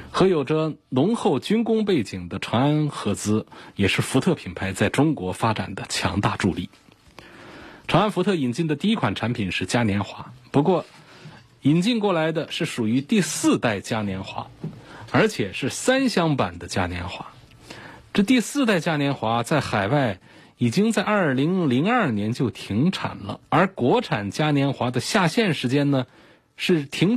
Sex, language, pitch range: male, Chinese, 115-165 Hz